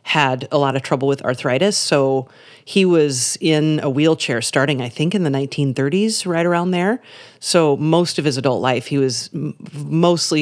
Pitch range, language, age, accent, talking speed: 140-180 Hz, English, 40-59, American, 180 wpm